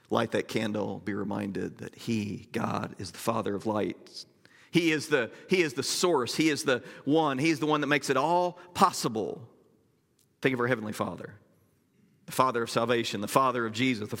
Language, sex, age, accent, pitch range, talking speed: English, male, 40-59, American, 115-145 Hz, 190 wpm